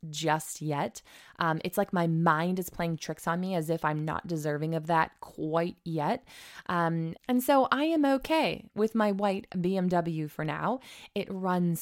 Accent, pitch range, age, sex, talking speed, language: American, 165-210 Hz, 20-39, female, 180 wpm, English